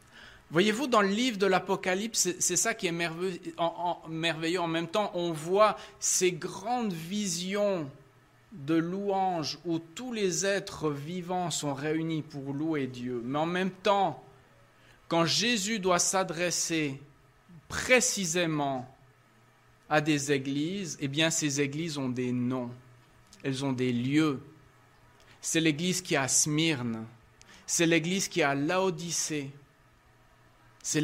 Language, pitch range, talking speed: French, 130-175 Hz, 135 wpm